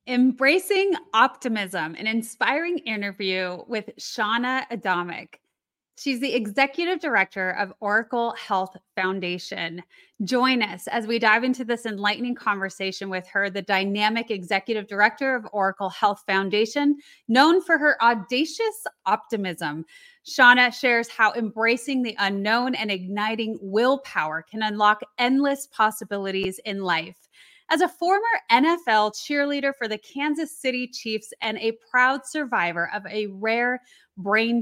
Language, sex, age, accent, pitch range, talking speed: English, female, 30-49, American, 205-265 Hz, 125 wpm